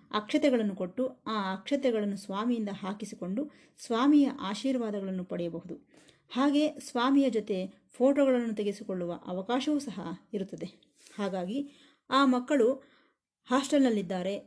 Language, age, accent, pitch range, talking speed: Kannada, 20-39, native, 190-270 Hz, 85 wpm